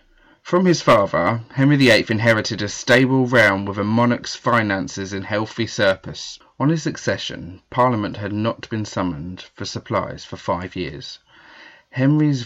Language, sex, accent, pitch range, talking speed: English, male, British, 95-120 Hz, 145 wpm